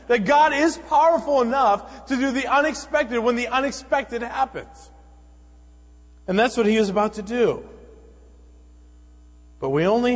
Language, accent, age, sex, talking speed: English, American, 40-59, male, 140 wpm